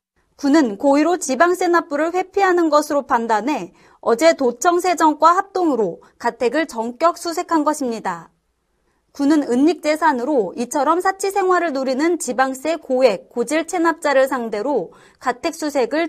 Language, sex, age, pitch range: Korean, female, 30-49, 255-335 Hz